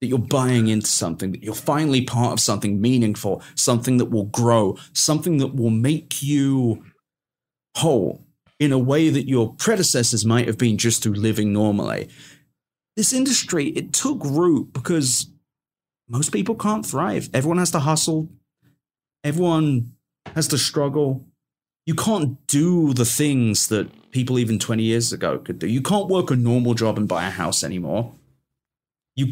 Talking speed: 160 wpm